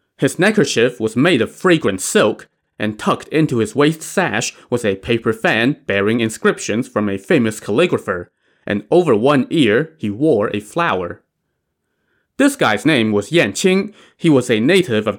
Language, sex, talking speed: English, male, 165 wpm